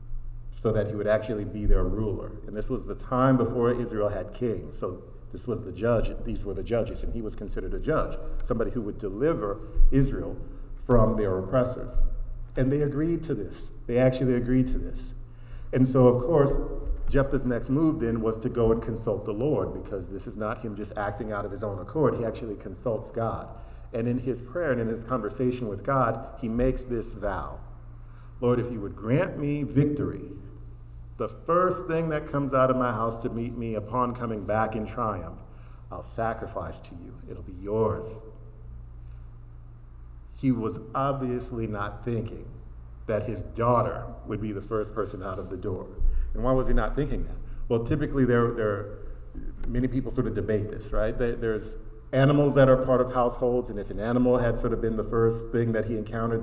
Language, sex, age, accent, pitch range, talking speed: English, male, 50-69, American, 105-125 Hz, 195 wpm